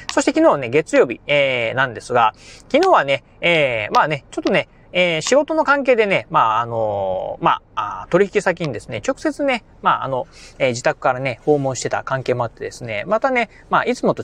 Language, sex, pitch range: Japanese, male, 135-210 Hz